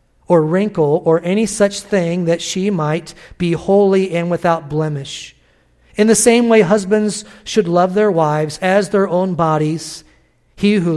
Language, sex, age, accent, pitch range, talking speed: English, male, 50-69, American, 155-200 Hz, 160 wpm